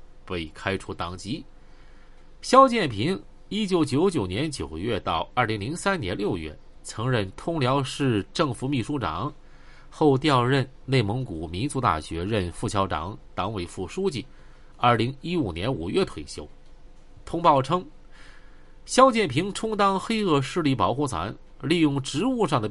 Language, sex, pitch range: Chinese, male, 100-160 Hz